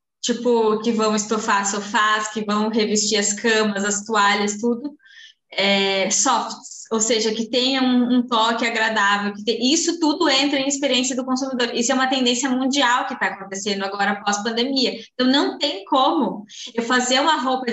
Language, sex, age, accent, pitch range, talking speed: Portuguese, female, 20-39, Brazilian, 210-255 Hz, 170 wpm